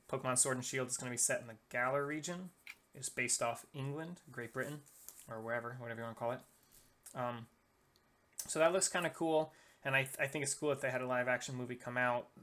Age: 20-39